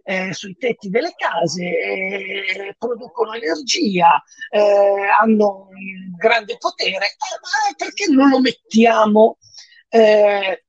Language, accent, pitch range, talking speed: Italian, native, 180-245 Hz, 110 wpm